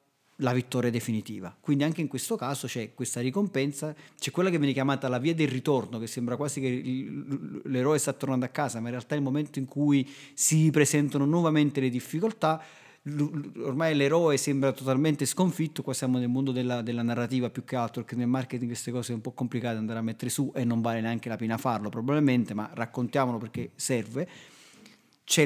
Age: 40-59